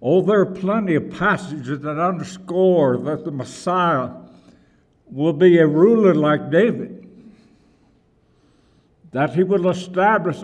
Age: 60-79